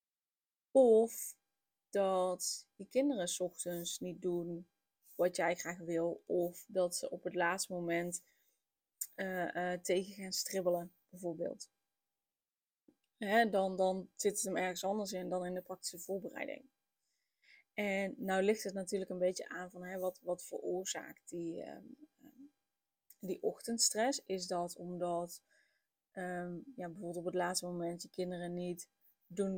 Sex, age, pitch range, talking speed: female, 20-39, 180-205 Hz, 140 wpm